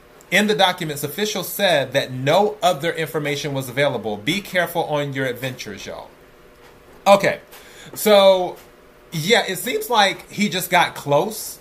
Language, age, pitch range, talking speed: English, 30-49, 130-165 Hz, 140 wpm